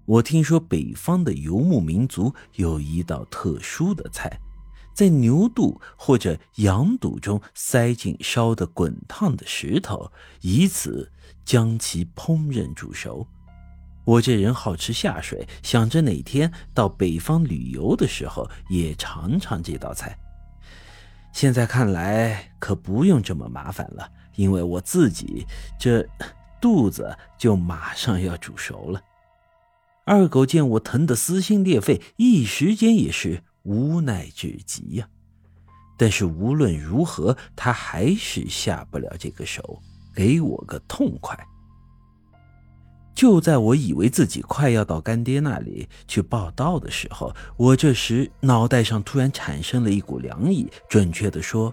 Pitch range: 90-145 Hz